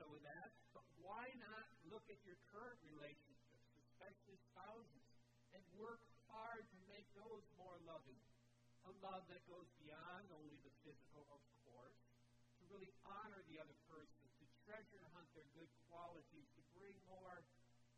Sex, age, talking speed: male, 50-69, 150 wpm